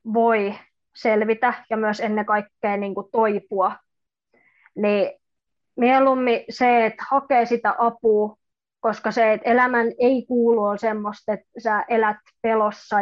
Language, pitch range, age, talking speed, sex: Finnish, 210-230 Hz, 20-39, 125 wpm, female